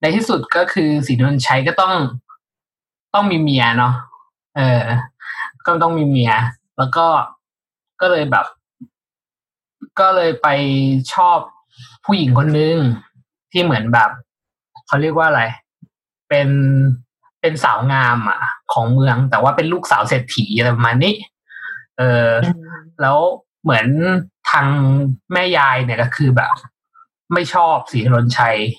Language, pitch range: English, 125-170 Hz